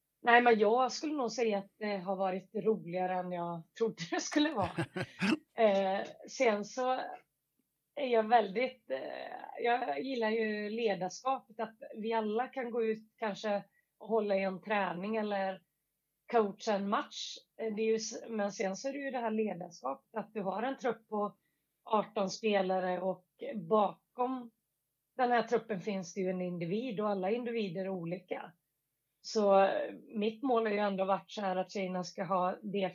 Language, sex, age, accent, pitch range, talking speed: Swedish, female, 30-49, native, 185-230 Hz, 170 wpm